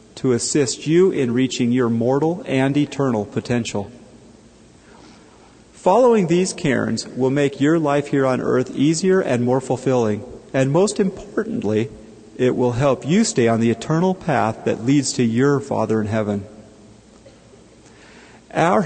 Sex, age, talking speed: male, 40-59, 140 wpm